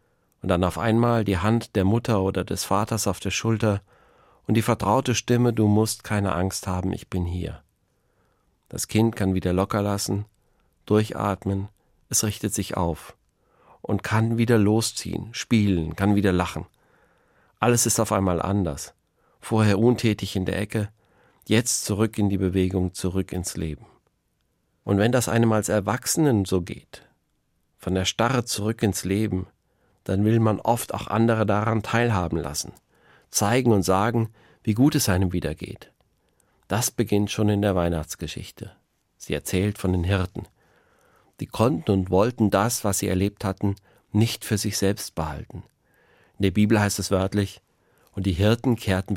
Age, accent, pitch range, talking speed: 50-69, German, 95-110 Hz, 155 wpm